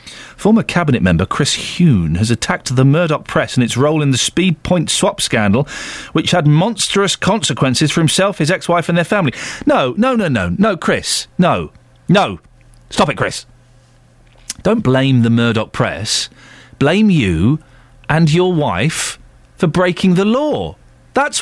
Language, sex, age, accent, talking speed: English, male, 40-59, British, 155 wpm